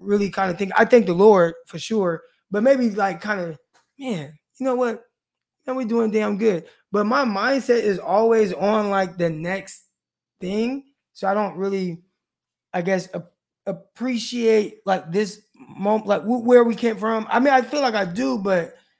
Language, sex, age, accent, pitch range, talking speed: English, male, 20-39, American, 175-210 Hz, 180 wpm